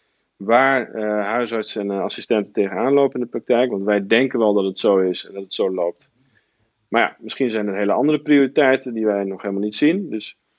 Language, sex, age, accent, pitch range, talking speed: Dutch, male, 40-59, Dutch, 105-130 Hz, 215 wpm